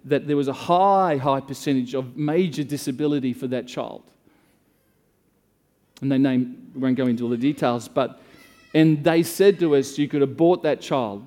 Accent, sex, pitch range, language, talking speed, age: Australian, male, 130-160 Hz, English, 180 wpm, 40-59